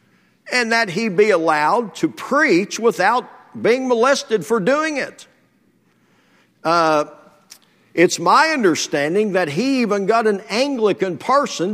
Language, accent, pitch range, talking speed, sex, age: English, American, 145-215 Hz, 125 wpm, male, 50-69